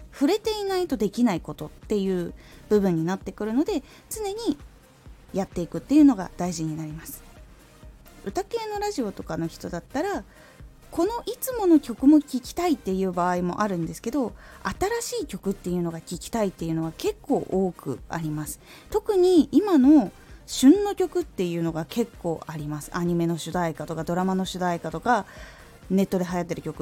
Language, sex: Japanese, female